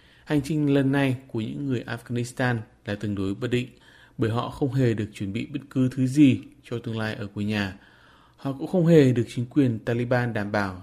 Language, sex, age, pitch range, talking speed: Vietnamese, male, 20-39, 105-130 Hz, 220 wpm